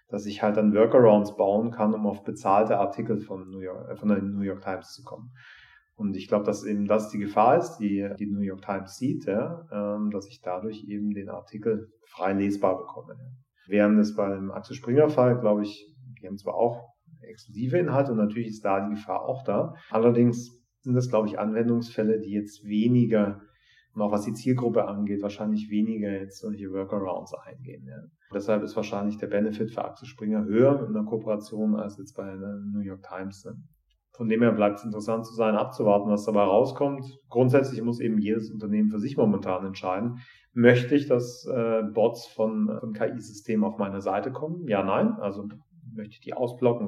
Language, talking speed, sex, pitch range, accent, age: German, 190 wpm, male, 100-120 Hz, German, 40-59